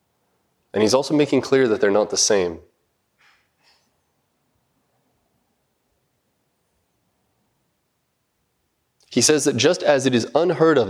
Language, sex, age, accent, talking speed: English, male, 30-49, American, 105 wpm